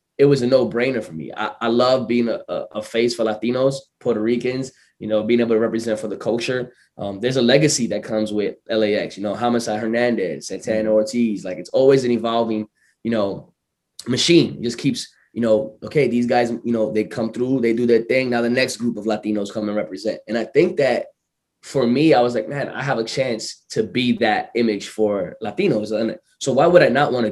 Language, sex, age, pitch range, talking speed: English, male, 20-39, 110-125 Hz, 230 wpm